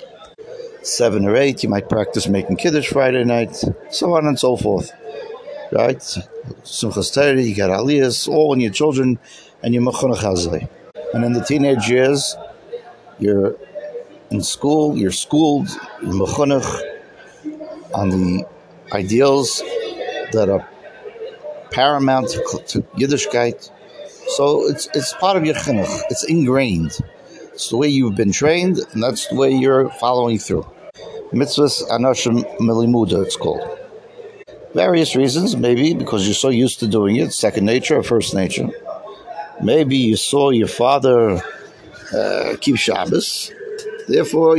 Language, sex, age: English, male, 60-79